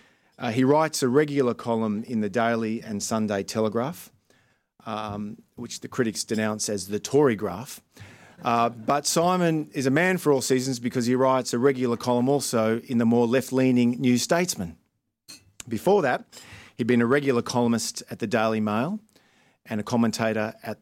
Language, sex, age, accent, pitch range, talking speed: English, male, 40-59, Australian, 110-130 Hz, 165 wpm